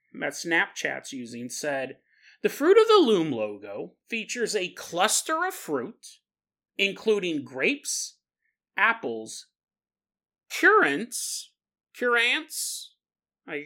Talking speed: 90 wpm